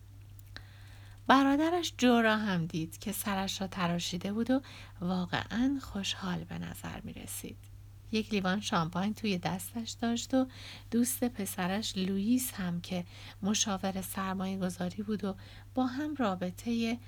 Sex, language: female, Persian